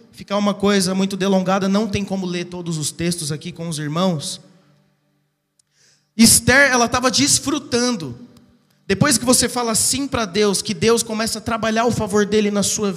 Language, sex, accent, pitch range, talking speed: Portuguese, male, Brazilian, 185-230 Hz, 170 wpm